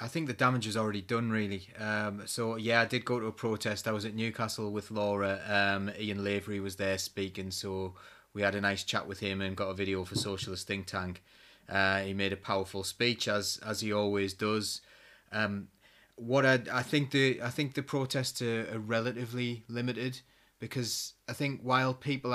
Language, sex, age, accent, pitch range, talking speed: English, male, 30-49, British, 100-120 Hz, 200 wpm